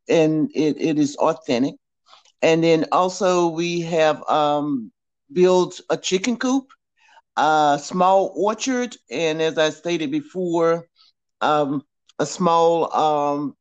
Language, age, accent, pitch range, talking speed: English, 50-69, American, 155-205 Hz, 120 wpm